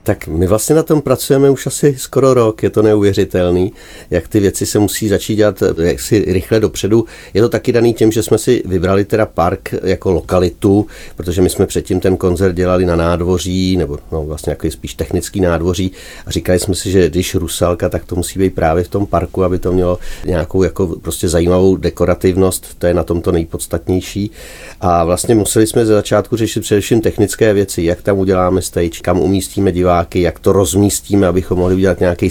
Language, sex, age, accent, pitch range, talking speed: Czech, male, 40-59, native, 90-105 Hz, 195 wpm